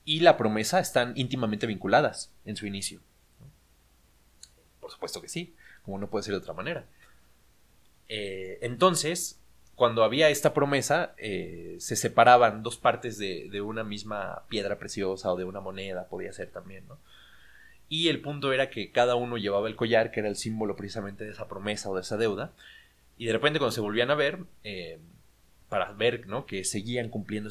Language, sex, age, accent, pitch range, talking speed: Spanish, male, 30-49, Mexican, 100-130 Hz, 175 wpm